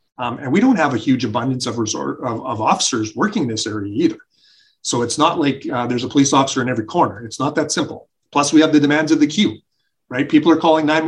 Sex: male